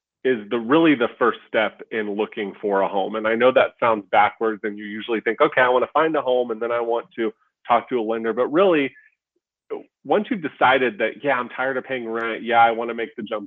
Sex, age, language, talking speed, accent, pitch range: male, 30-49, English, 250 wpm, American, 110-130 Hz